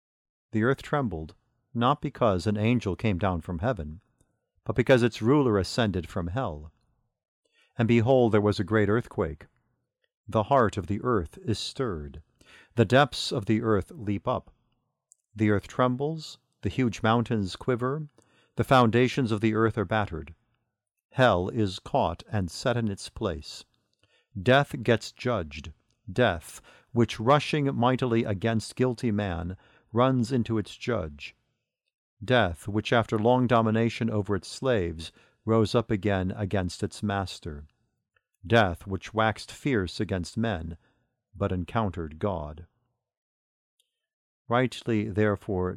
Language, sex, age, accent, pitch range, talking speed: English, male, 50-69, American, 100-125 Hz, 130 wpm